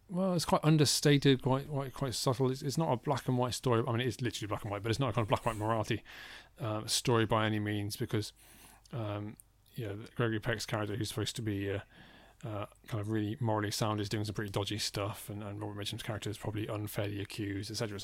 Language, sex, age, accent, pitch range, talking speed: English, male, 30-49, British, 110-130 Hz, 245 wpm